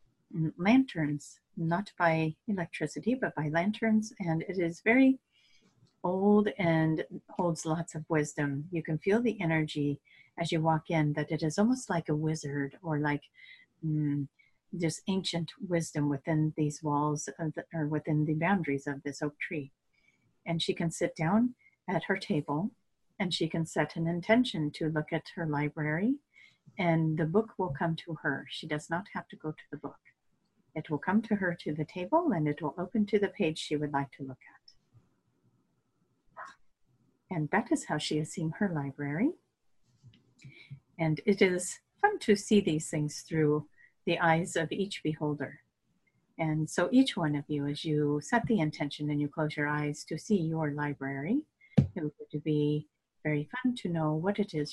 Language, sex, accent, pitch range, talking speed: English, female, American, 150-190 Hz, 175 wpm